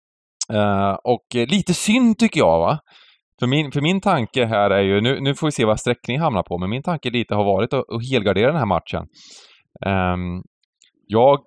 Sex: male